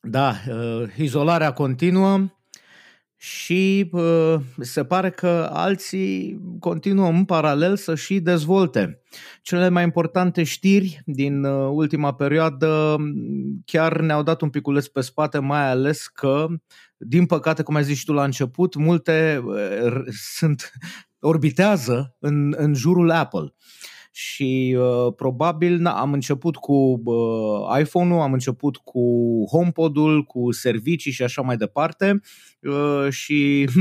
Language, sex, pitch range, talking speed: Romanian, male, 130-170 Hz, 115 wpm